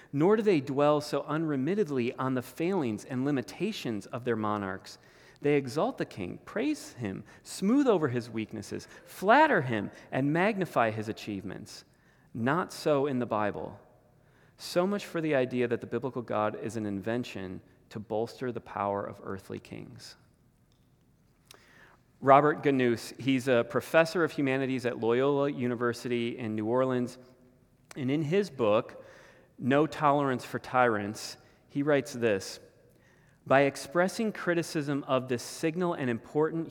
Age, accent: 30-49, American